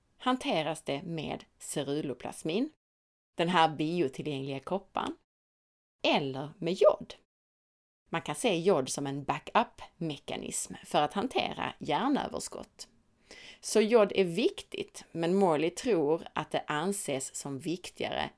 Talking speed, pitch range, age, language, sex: 110 wpm, 150-200 Hz, 30-49, Swedish, female